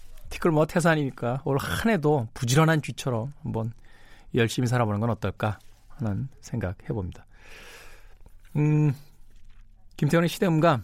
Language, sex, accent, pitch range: Korean, male, native, 100-150 Hz